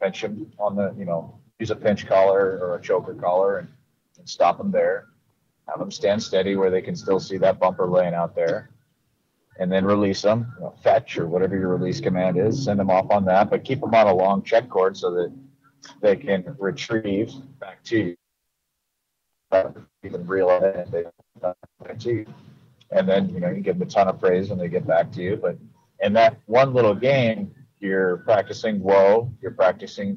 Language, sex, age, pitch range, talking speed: English, male, 30-49, 95-120 Hz, 190 wpm